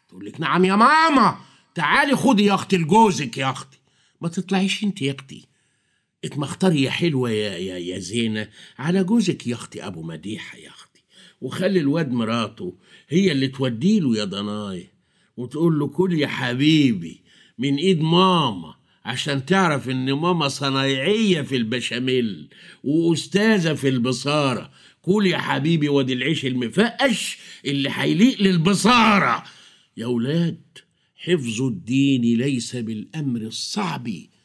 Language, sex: Arabic, male